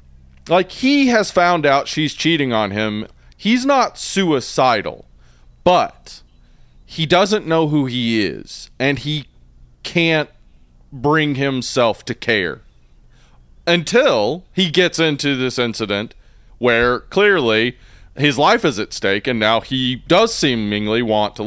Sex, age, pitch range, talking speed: male, 30-49, 100-150 Hz, 130 wpm